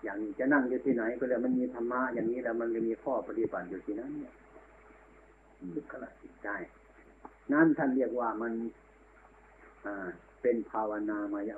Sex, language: male, Thai